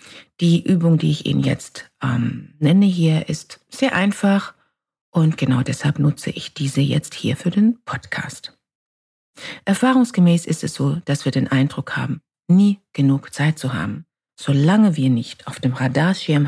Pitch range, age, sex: 140-195 Hz, 50-69, female